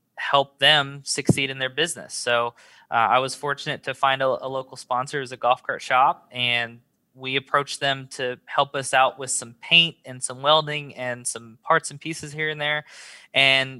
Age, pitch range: 20-39, 125-140 Hz